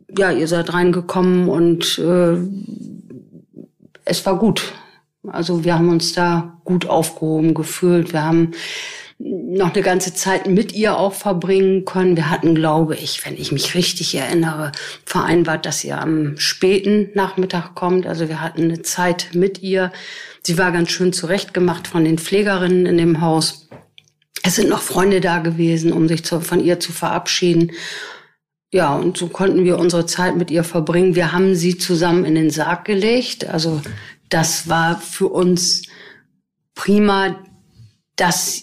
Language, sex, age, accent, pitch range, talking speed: German, female, 50-69, German, 165-190 Hz, 155 wpm